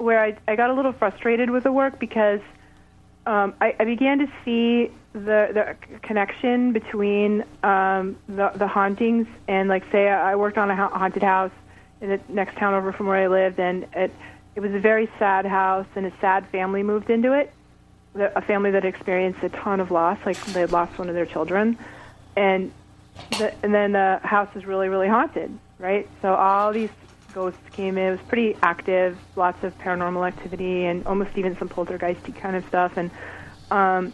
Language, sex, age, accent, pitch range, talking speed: English, female, 30-49, American, 190-220 Hz, 195 wpm